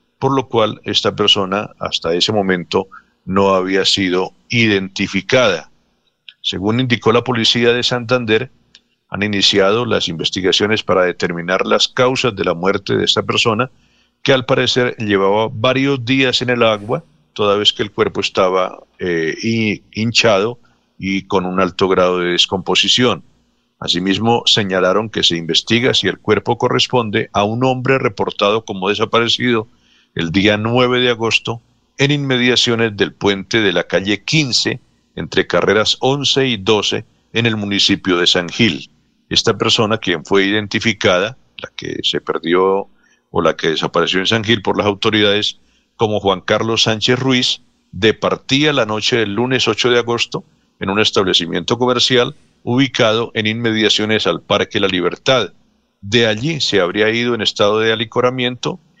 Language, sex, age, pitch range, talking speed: Spanish, male, 50-69, 100-125 Hz, 150 wpm